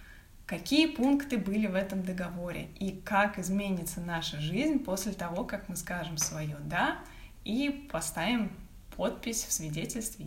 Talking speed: 135 wpm